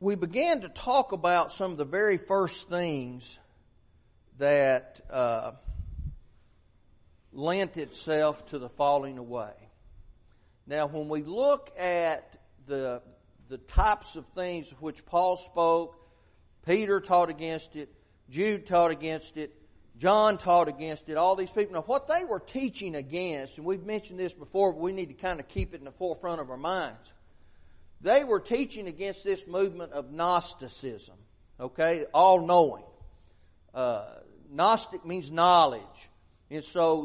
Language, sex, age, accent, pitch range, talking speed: English, male, 40-59, American, 145-195 Hz, 145 wpm